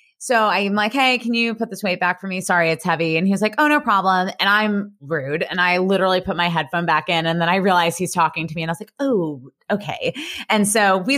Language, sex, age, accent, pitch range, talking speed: English, female, 20-39, American, 180-250 Hz, 270 wpm